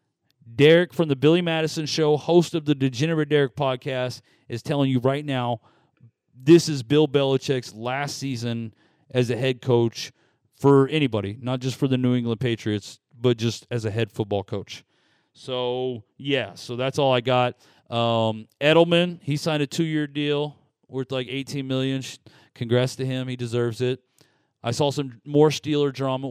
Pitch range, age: 115-140 Hz, 30-49